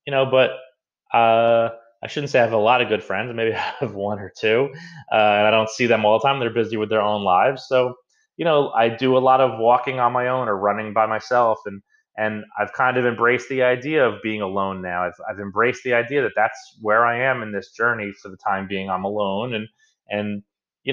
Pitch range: 100-125 Hz